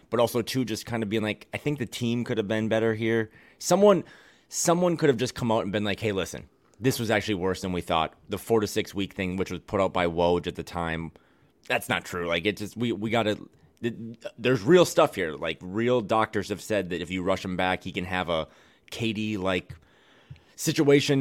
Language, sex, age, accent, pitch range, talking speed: English, male, 30-49, American, 95-130 Hz, 230 wpm